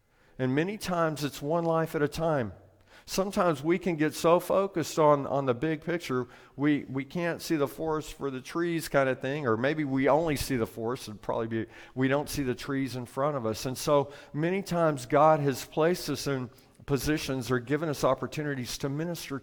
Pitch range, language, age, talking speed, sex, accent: 130-165 Hz, English, 50-69, 205 wpm, male, American